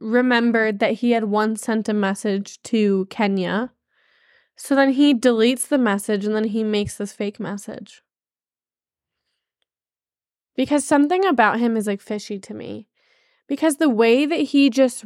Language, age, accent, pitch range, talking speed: English, 10-29, American, 220-290 Hz, 150 wpm